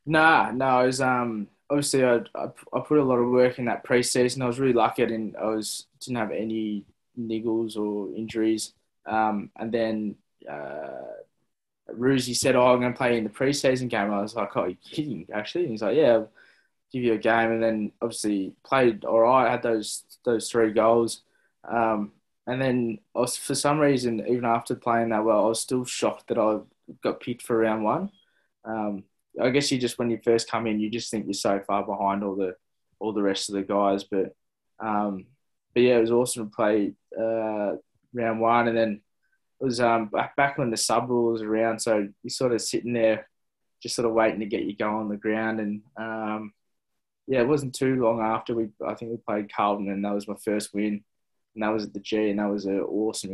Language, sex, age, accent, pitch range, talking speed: English, male, 20-39, Australian, 105-125 Hz, 215 wpm